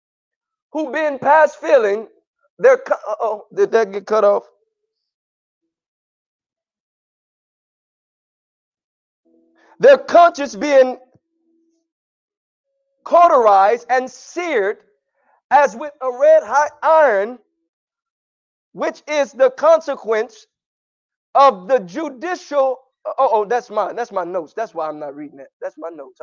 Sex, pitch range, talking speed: male, 225-320 Hz, 105 wpm